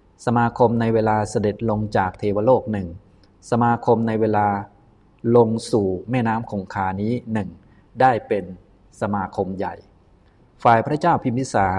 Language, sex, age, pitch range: Thai, male, 20-39, 100-120 Hz